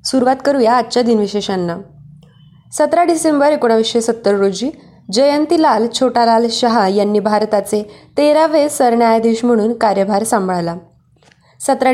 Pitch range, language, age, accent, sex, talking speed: 215-260 Hz, Marathi, 20-39, native, female, 105 wpm